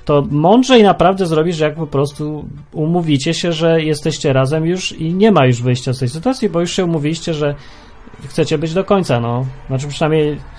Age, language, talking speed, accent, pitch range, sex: 30-49, Polish, 185 wpm, native, 130-170 Hz, male